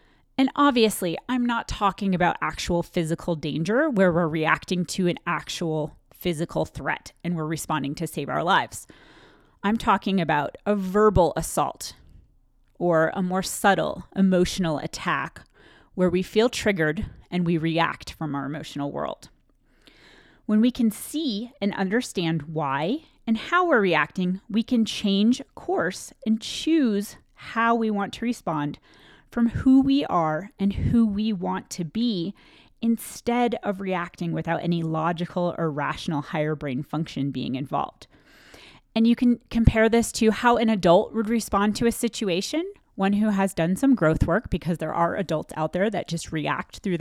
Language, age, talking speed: English, 30-49, 155 wpm